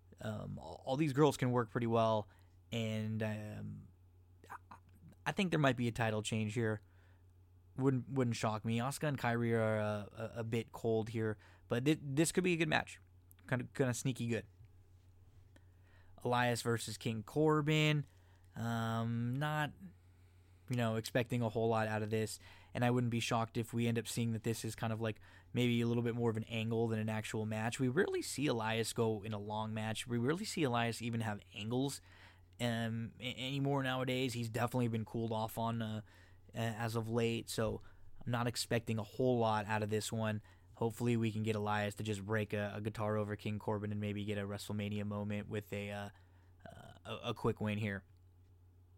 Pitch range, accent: 100-120 Hz, American